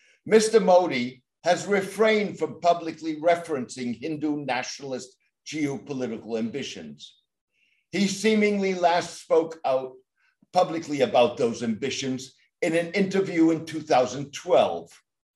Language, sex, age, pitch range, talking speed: English, male, 60-79, 135-175 Hz, 100 wpm